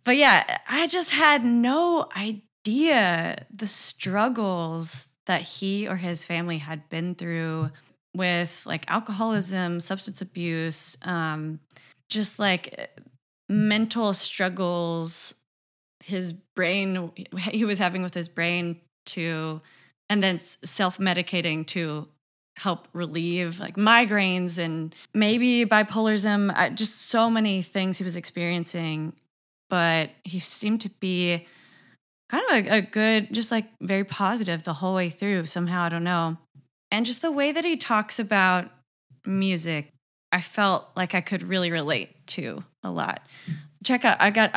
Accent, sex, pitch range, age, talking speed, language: American, female, 170-210 Hz, 20-39, 135 wpm, English